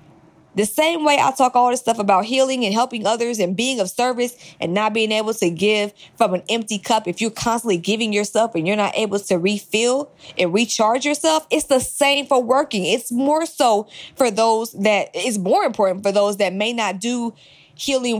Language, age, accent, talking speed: English, 20-39, American, 205 wpm